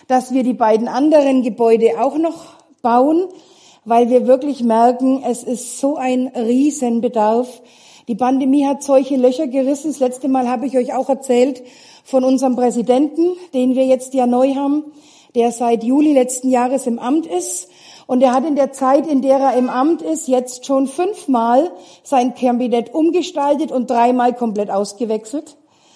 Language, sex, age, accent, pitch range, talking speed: German, female, 50-69, German, 240-285 Hz, 165 wpm